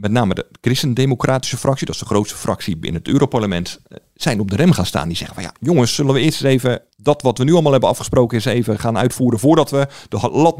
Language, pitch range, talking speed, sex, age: Dutch, 105-140 Hz, 245 wpm, male, 50-69